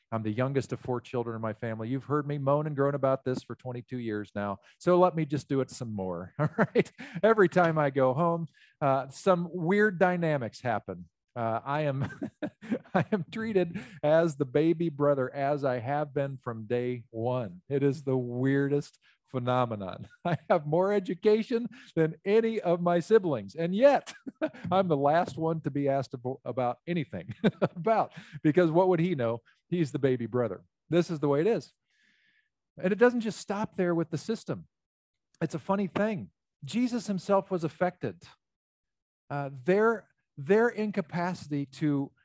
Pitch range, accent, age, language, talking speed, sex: 140-195 Hz, American, 50-69, English, 170 wpm, male